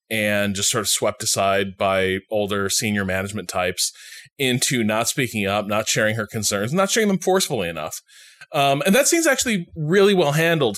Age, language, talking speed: 20-39, English, 180 wpm